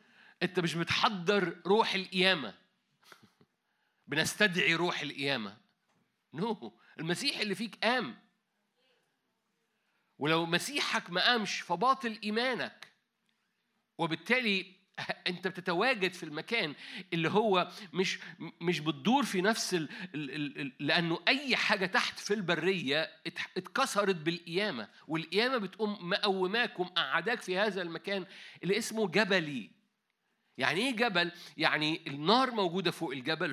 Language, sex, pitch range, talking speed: Arabic, male, 175-220 Hz, 105 wpm